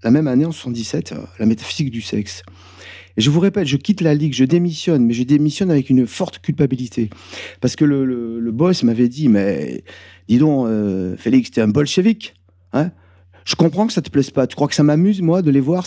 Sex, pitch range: male, 110-160 Hz